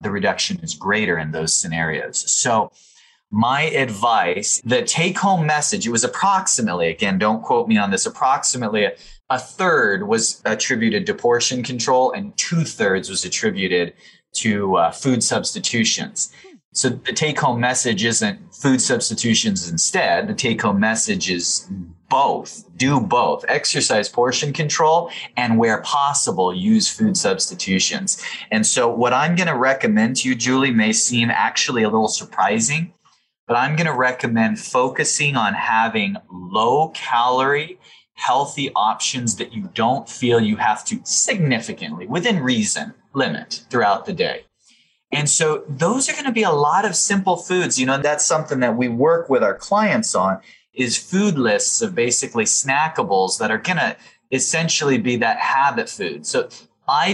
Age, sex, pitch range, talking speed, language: 30-49, male, 115-195 Hz, 150 wpm, English